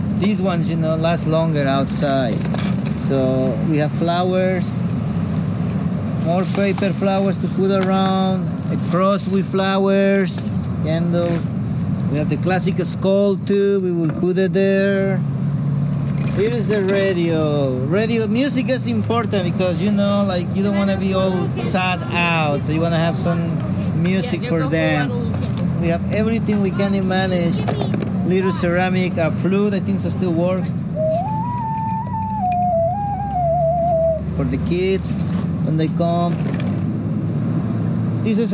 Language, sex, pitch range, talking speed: English, male, 160-190 Hz, 130 wpm